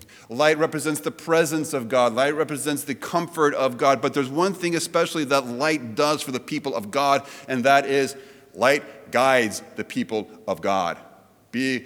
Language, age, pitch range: English, 30-49, 135-185 Hz